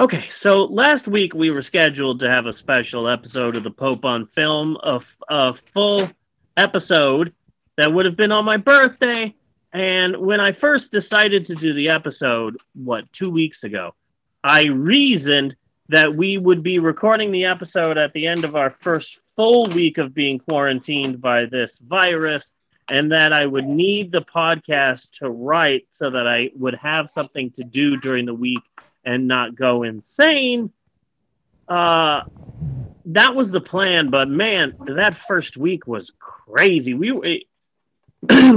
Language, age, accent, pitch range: English, 30-49, American, 140-200 Hz